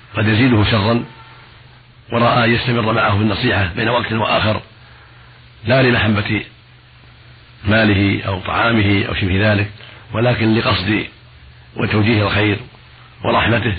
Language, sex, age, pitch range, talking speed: Arabic, male, 50-69, 100-120 Hz, 105 wpm